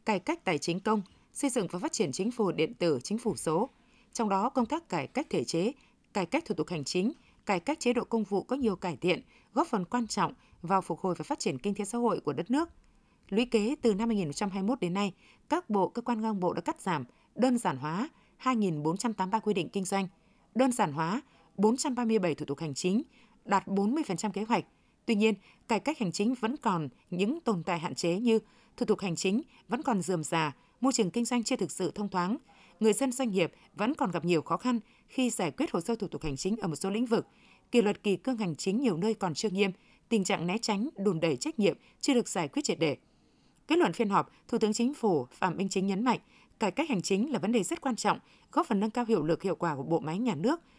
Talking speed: 250 wpm